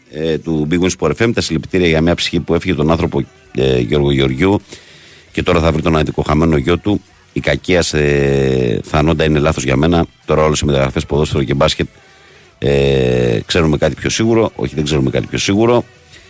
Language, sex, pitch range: Greek, male, 75-105 Hz